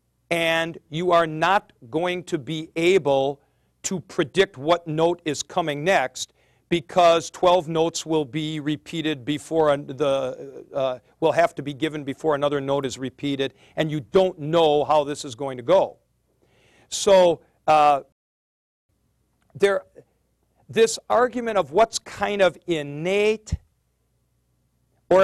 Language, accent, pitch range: English, American, 140-175 Hz